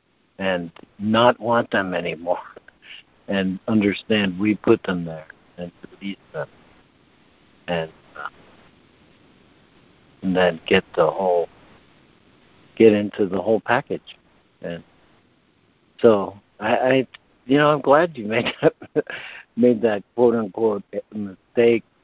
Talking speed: 110 wpm